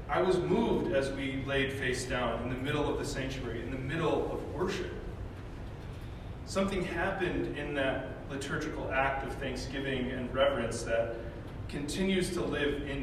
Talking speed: 155 wpm